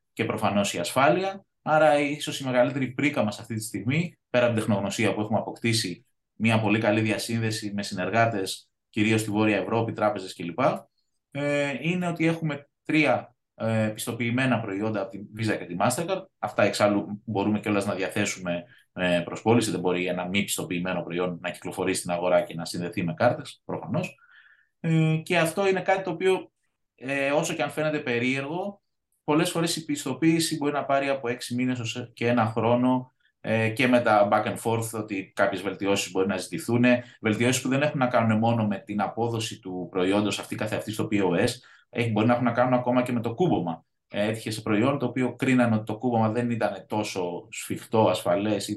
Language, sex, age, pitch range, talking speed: Greek, male, 20-39, 105-140 Hz, 175 wpm